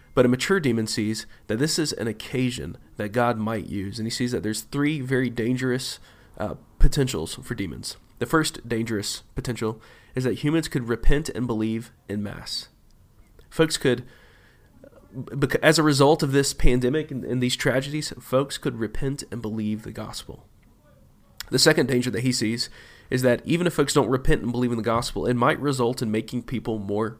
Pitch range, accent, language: 110-130 Hz, American, English